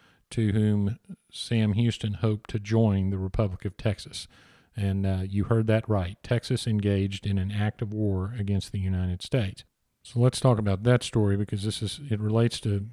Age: 40-59